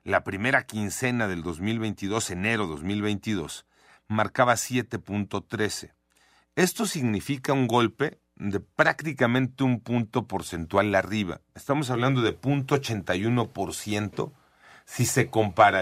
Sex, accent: male, Mexican